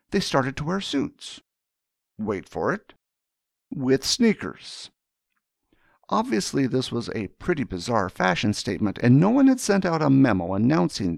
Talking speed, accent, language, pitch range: 145 wpm, American, English, 110-165 Hz